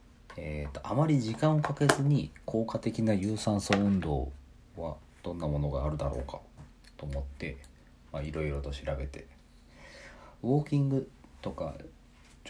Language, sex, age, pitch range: Japanese, male, 40-59, 70-90 Hz